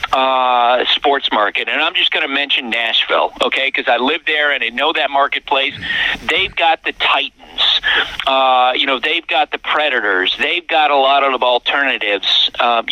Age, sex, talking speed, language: 50-69, male, 175 wpm, English